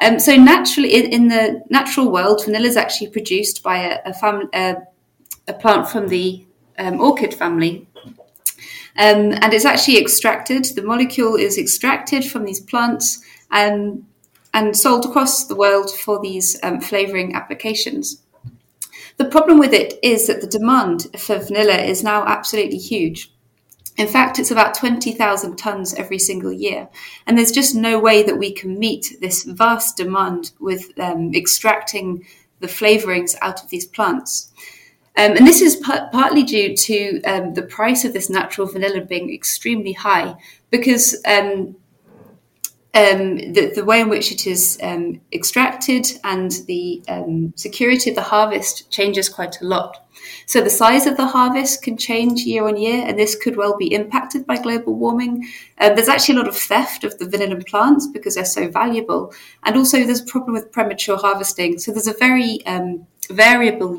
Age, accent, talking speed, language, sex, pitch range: 30-49, British, 165 wpm, English, female, 190-245 Hz